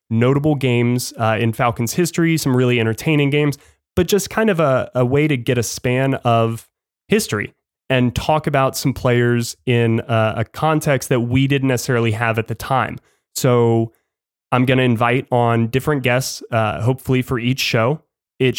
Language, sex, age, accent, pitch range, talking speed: English, male, 20-39, American, 115-135 Hz, 175 wpm